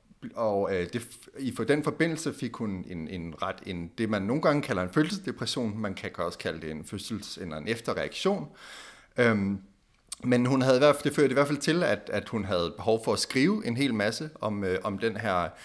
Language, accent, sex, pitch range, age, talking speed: Danish, native, male, 105-135 Hz, 30-49, 220 wpm